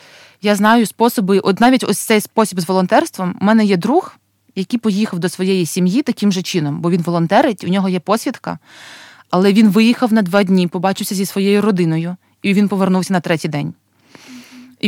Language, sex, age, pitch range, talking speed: Ukrainian, female, 20-39, 185-225 Hz, 180 wpm